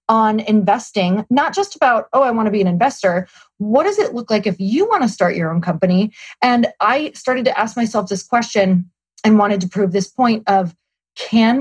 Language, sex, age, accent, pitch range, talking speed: English, female, 30-49, American, 195-265 Hz, 210 wpm